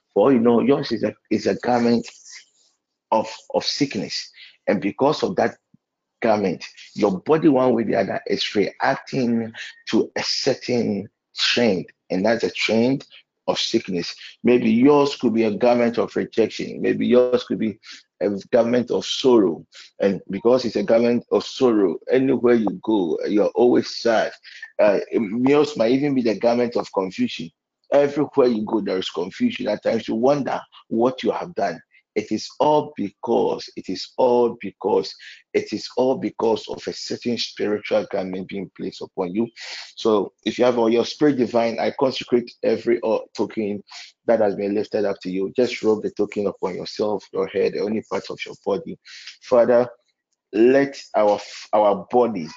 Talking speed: 170 wpm